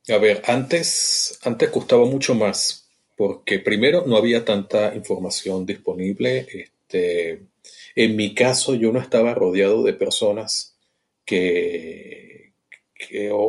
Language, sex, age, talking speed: Spanish, male, 40-59, 105 wpm